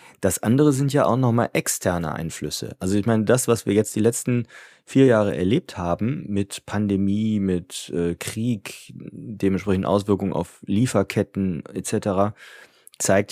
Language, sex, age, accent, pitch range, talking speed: German, male, 30-49, German, 95-120 Hz, 150 wpm